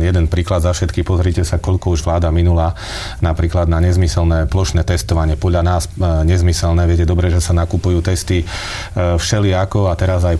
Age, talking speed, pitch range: 30-49, 165 wpm, 90-105 Hz